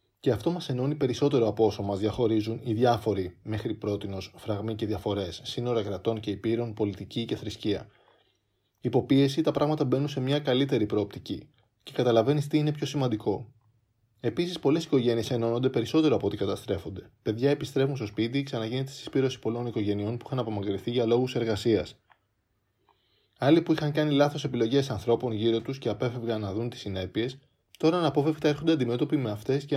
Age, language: 20-39, Greek